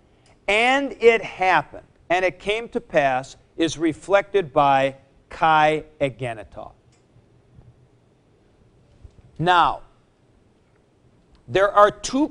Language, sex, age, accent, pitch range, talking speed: English, male, 50-69, American, 155-220 Hz, 80 wpm